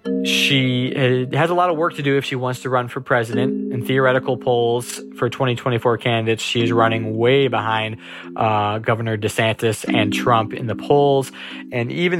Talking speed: 170 wpm